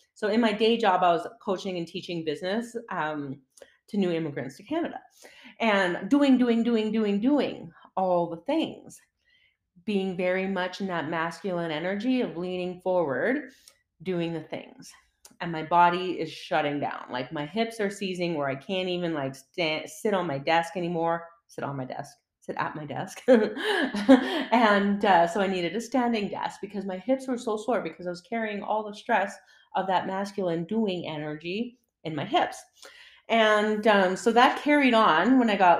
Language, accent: English, American